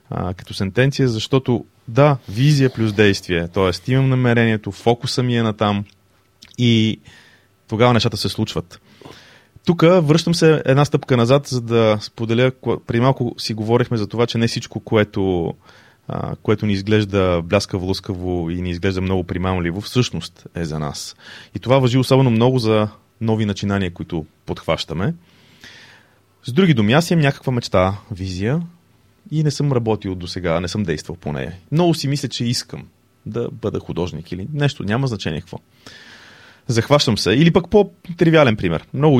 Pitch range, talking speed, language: 95-130 Hz, 155 wpm, Bulgarian